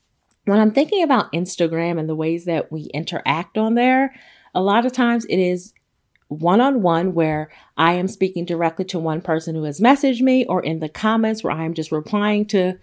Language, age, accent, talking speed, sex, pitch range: English, 30-49, American, 195 wpm, female, 160-205 Hz